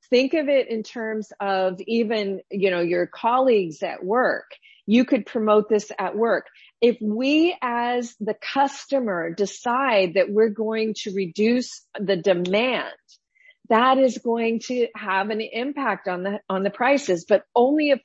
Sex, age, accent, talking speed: female, 40-59, American, 155 wpm